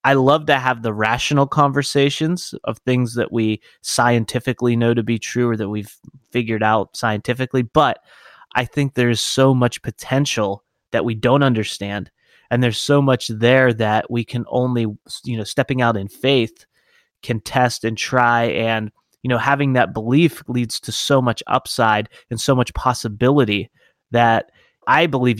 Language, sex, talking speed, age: English, male, 170 wpm, 30-49